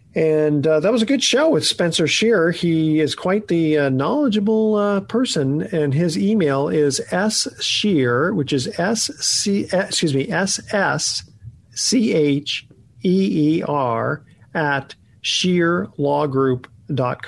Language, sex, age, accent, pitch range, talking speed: English, male, 50-69, American, 135-185 Hz, 140 wpm